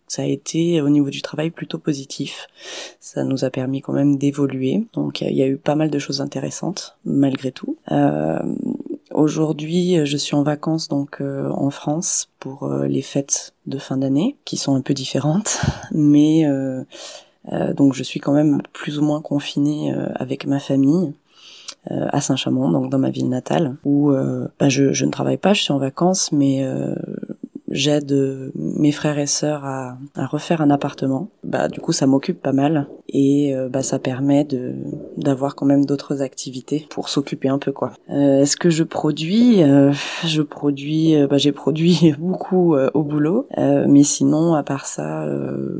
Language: French